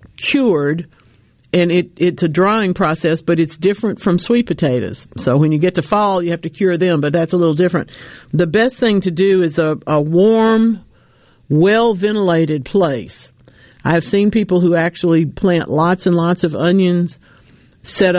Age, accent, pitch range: 50-69, American, 145-175 Hz